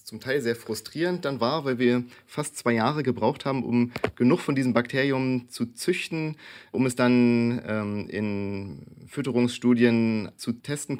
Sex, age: male, 30-49